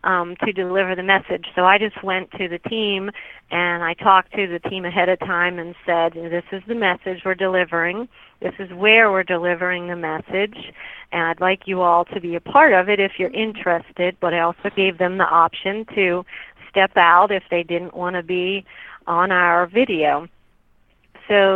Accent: American